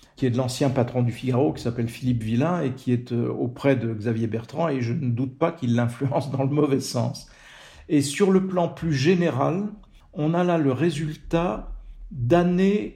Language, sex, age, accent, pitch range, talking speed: French, male, 50-69, French, 135-175 Hz, 190 wpm